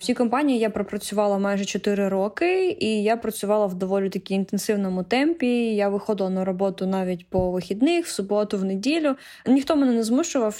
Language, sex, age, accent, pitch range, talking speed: Ukrainian, female, 20-39, native, 190-220 Hz, 170 wpm